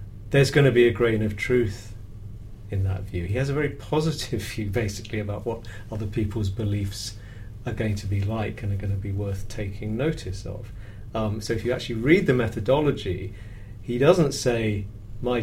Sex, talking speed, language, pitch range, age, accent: male, 190 wpm, English, 105-125 Hz, 40-59, British